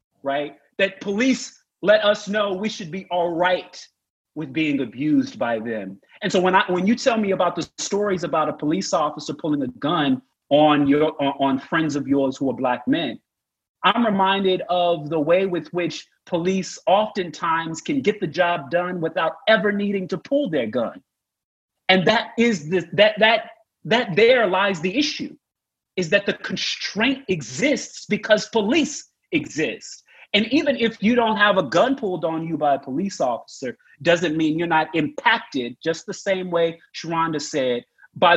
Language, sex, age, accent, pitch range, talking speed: English, male, 30-49, American, 160-215 Hz, 175 wpm